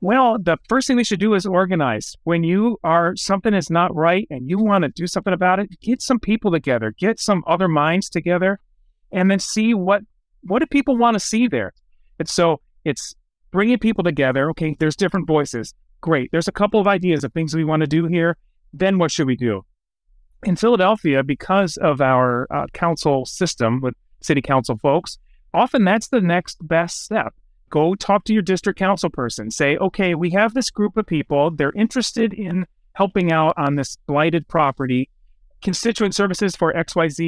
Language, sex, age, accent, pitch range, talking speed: English, male, 30-49, American, 155-210 Hz, 190 wpm